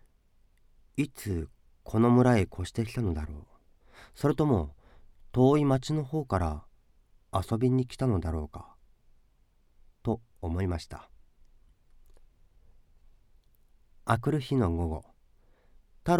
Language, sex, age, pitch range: Japanese, male, 40-59, 85-125 Hz